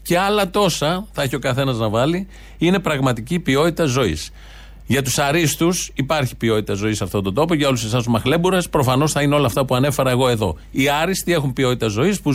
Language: Greek